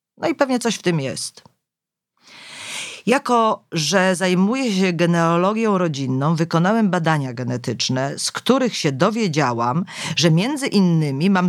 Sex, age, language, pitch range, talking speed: female, 40-59, Polish, 160-220 Hz, 125 wpm